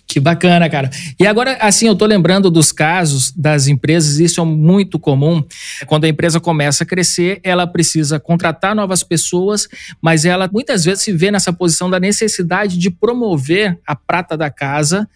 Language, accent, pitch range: Portuguese, Brazilian, 160-195 Hz